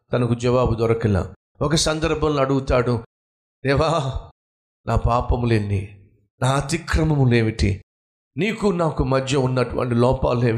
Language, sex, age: Telugu, male, 50-69